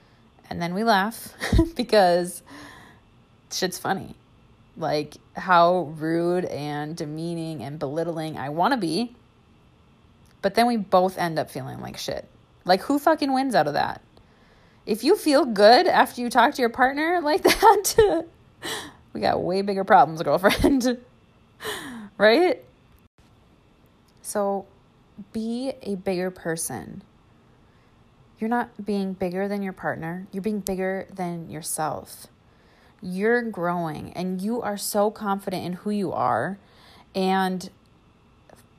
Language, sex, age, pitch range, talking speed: English, female, 20-39, 165-225 Hz, 125 wpm